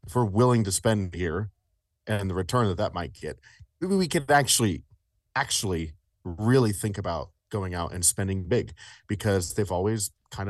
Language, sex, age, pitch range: English, male, 30-49, 85-105 Hz